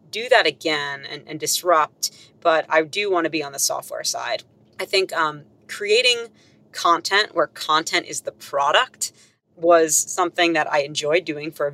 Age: 30-49